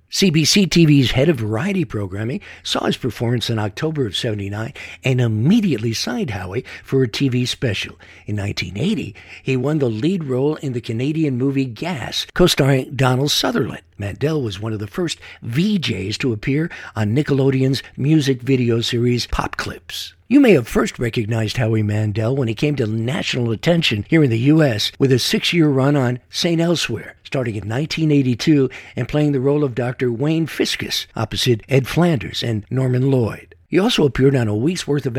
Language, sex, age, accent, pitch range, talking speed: English, male, 60-79, American, 115-155 Hz, 170 wpm